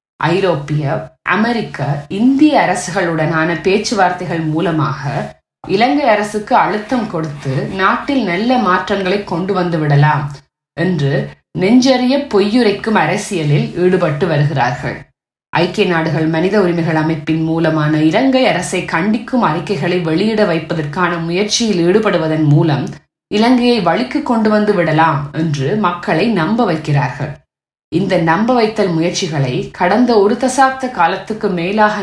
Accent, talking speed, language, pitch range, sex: native, 105 wpm, Tamil, 160-215 Hz, female